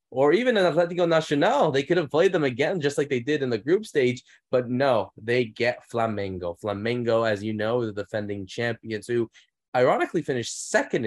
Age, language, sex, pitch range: 20-39, English, male, 100-120 Hz